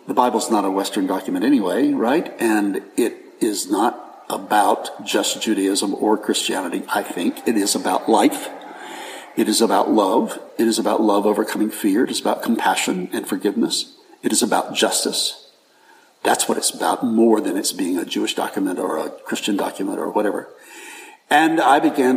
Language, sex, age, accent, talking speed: English, male, 60-79, American, 170 wpm